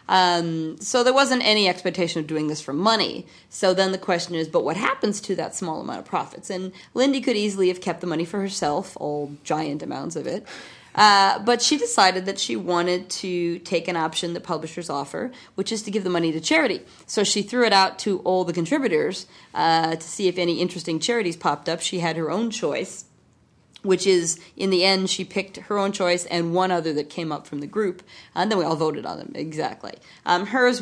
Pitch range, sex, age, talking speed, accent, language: 160-195 Hz, female, 30-49, 220 wpm, American, English